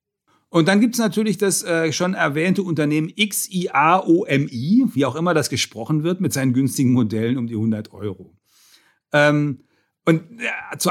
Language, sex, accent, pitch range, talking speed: German, male, German, 135-180 Hz, 145 wpm